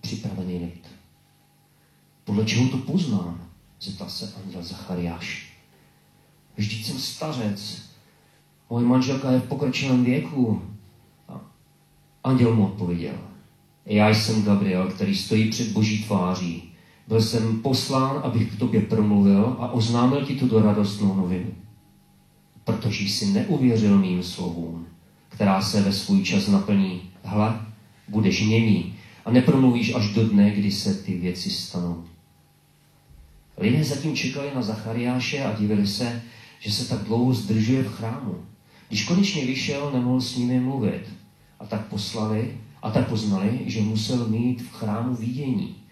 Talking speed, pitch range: 135 wpm, 100-125 Hz